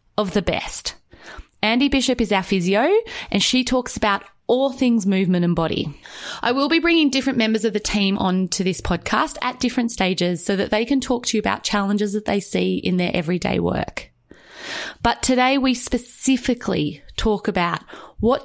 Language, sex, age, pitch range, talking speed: English, female, 20-39, 185-250 Hz, 180 wpm